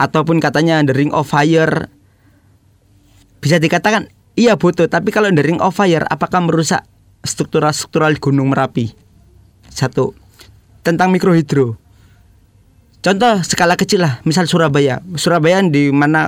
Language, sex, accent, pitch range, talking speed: Indonesian, male, native, 115-165 Hz, 120 wpm